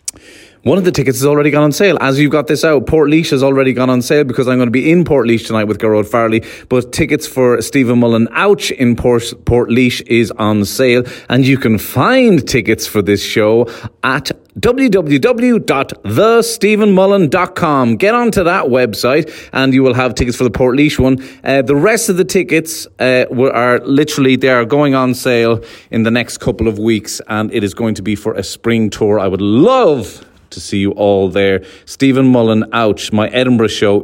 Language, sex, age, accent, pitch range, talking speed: English, male, 30-49, Irish, 115-145 Hz, 205 wpm